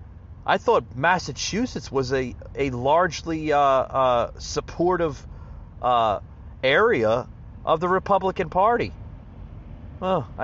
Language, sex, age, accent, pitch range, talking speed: English, male, 40-59, American, 115-160 Hz, 100 wpm